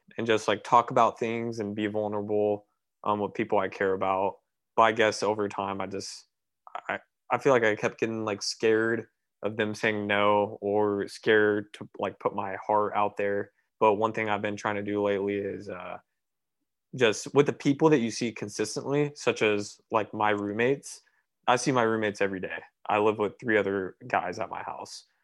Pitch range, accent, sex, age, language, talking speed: 100-110 Hz, American, male, 20-39, English, 195 wpm